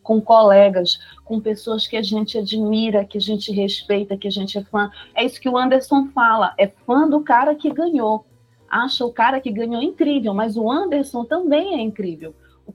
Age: 40-59